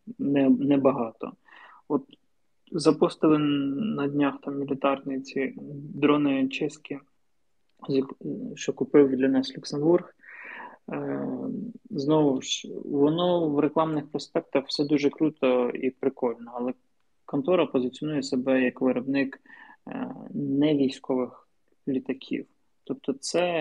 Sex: male